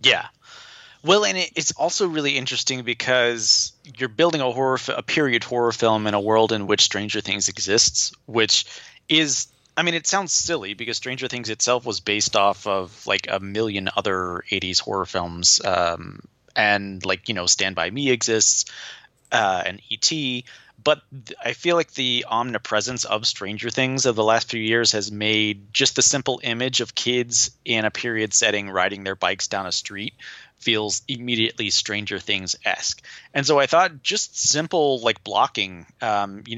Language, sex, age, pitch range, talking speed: English, male, 30-49, 105-130 Hz, 175 wpm